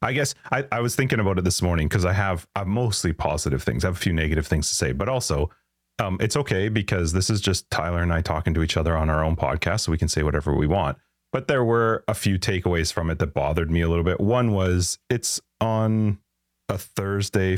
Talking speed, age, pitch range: 240 wpm, 30-49, 85-100 Hz